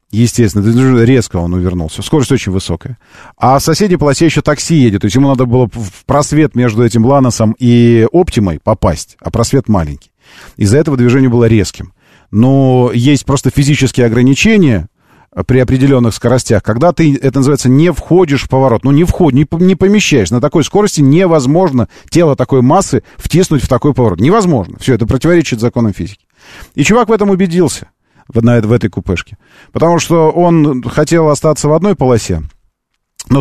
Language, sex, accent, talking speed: Russian, male, native, 160 wpm